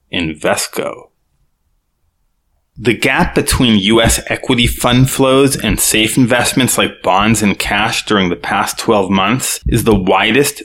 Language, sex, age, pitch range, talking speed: English, male, 20-39, 105-125 Hz, 130 wpm